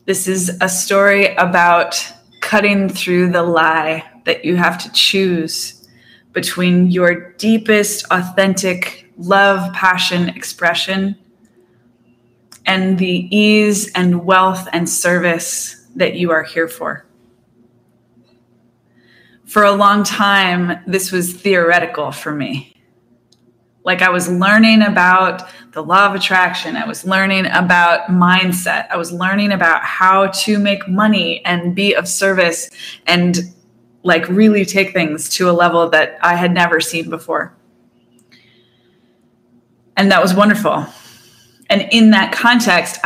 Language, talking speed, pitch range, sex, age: English, 125 wpm, 160-195 Hz, female, 20-39